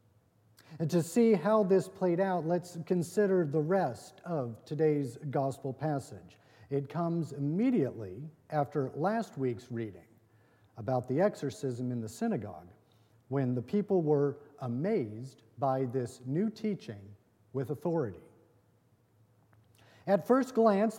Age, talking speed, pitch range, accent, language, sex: 50-69, 120 wpm, 120-170 Hz, American, English, male